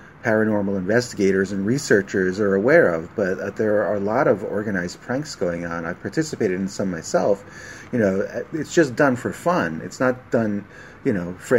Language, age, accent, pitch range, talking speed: English, 30-49, American, 95-125 Hz, 185 wpm